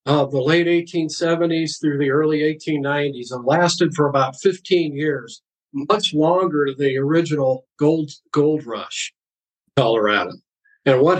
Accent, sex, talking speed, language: American, male, 140 wpm, English